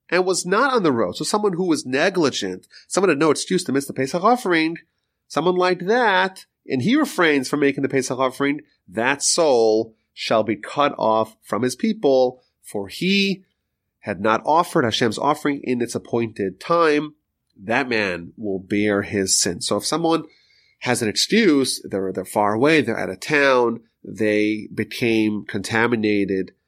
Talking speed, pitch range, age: 165 wpm, 105-150 Hz, 30-49